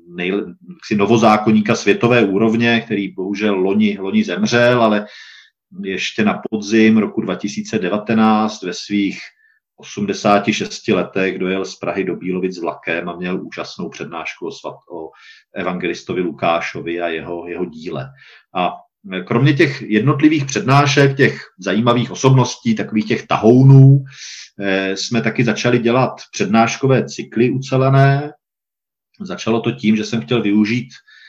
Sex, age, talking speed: male, 40-59, 120 wpm